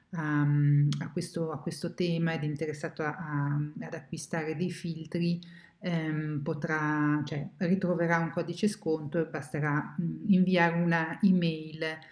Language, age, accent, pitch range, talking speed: Italian, 50-69, native, 155-180 Hz, 130 wpm